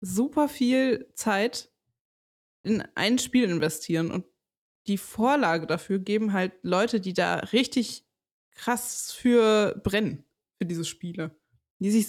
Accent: German